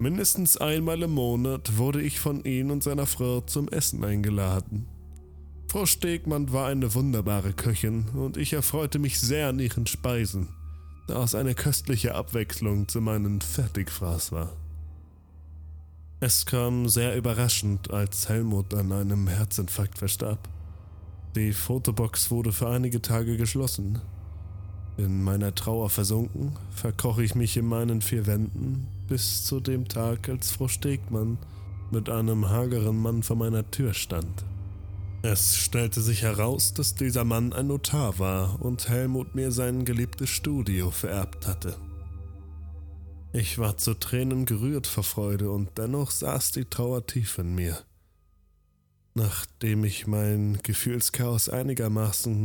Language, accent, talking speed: German, German, 135 wpm